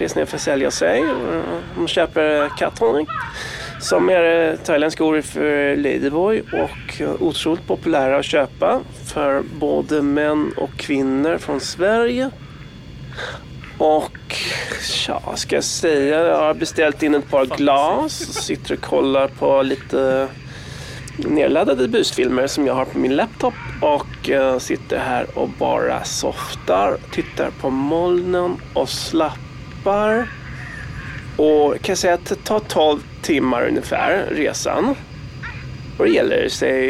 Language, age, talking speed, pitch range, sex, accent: Swedish, 30-49, 125 wpm, 130-155 Hz, male, native